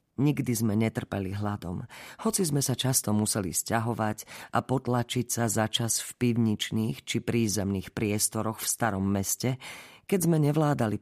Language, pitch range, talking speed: Slovak, 105-130 Hz, 140 wpm